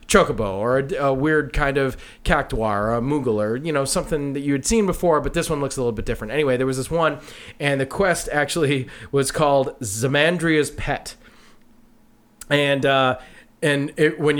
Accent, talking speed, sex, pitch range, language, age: American, 190 wpm, male, 135-185 Hz, English, 30-49